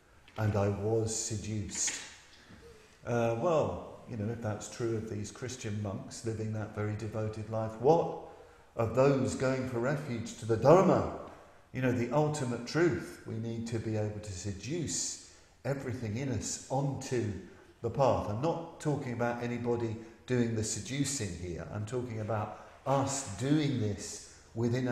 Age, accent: 50-69, British